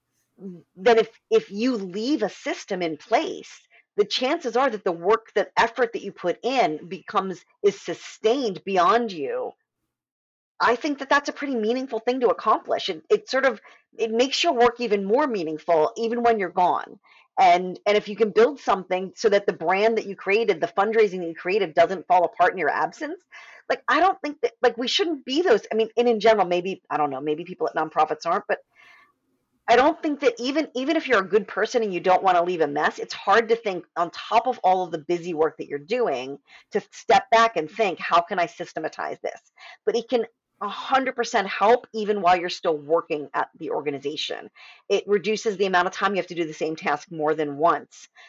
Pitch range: 180-245 Hz